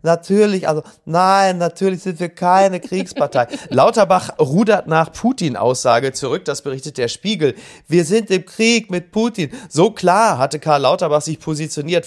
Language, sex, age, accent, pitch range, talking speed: German, male, 30-49, German, 125-165 Hz, 150 wpm